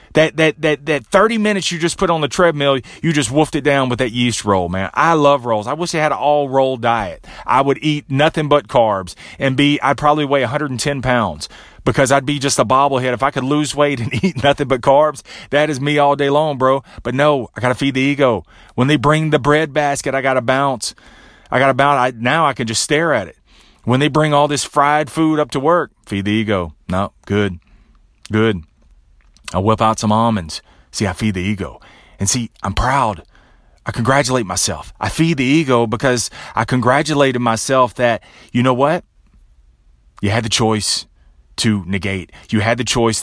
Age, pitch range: 30-49, 95-145 Hz